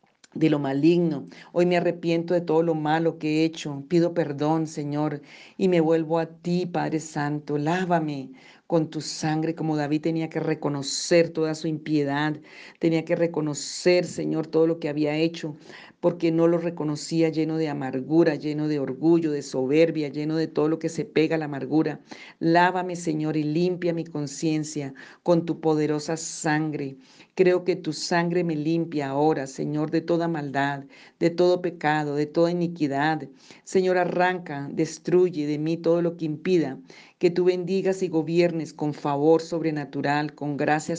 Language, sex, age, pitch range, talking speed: Spanish, female, 50-69, 150-170 Hz, 165 wpm